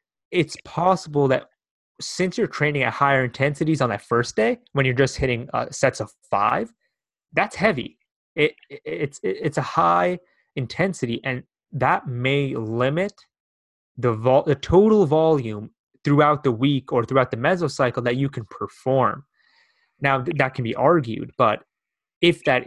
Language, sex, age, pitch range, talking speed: English, male, 20-39, 120-150 Hz, 160 wpm